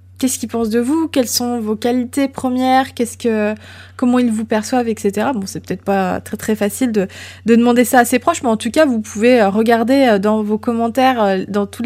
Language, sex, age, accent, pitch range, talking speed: French, female, 20-39, French, 200-245 Hz, 220 wpm